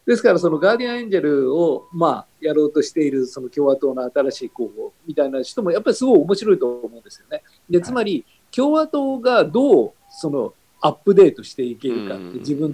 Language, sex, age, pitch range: Japanese, male, 50-69, 150-235 Hz